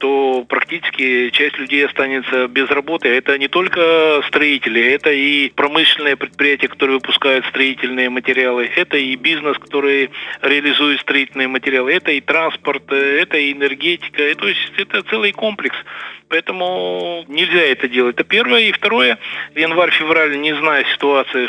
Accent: native